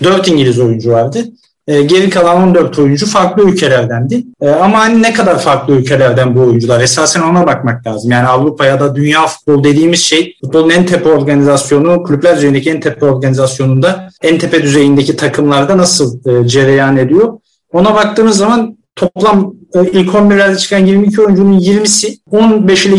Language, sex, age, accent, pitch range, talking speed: Turkish, male, 50-69, native, 140-190 Hz, 160 wpm